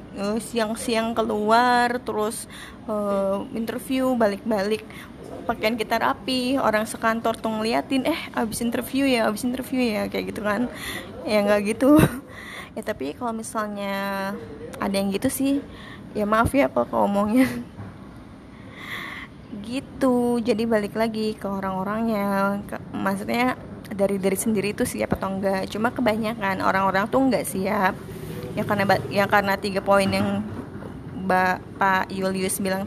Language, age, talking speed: Indonesian, 20-39, 125 wpm